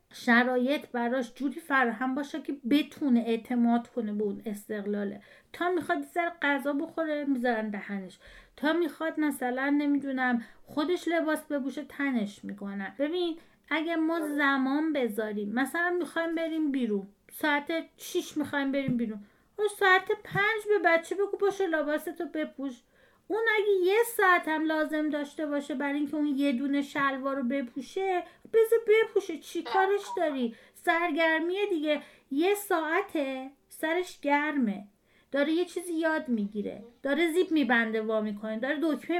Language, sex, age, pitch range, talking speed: Persian, female, 40-59, 255-335 Hz, 135 wpm